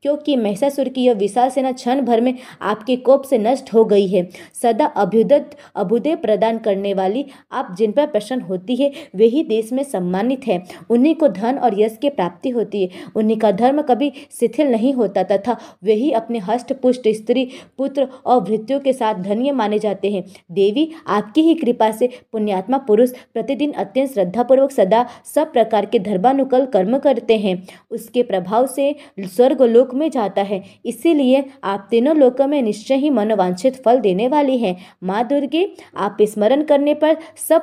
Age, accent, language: 20-39, native, Hindi